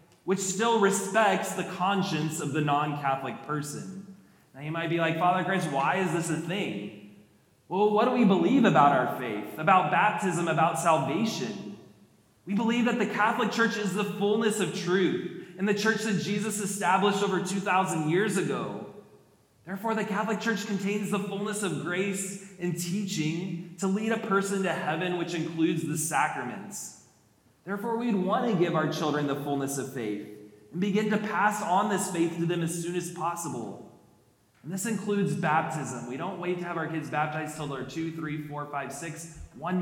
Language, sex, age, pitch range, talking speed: English, male, 20-39, 155-200 Hz, 180 wpm